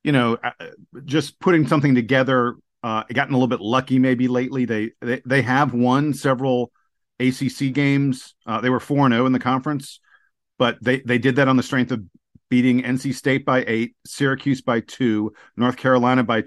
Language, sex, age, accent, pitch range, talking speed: English, male, 40-59, American, 120-145 Hz, 180 wpm